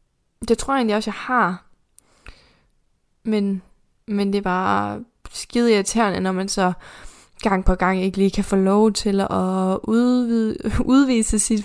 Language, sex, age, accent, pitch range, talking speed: Danish, female, 20-39, native, 190-225 Hz, 155 wpm